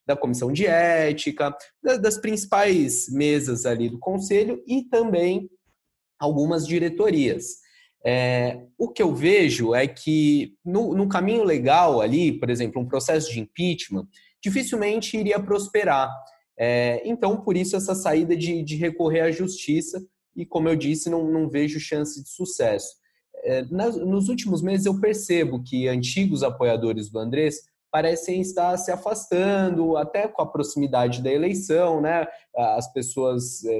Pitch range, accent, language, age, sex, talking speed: 130-185 Hz, Brazilian, Portuguese, 20-39, male, 145 wpm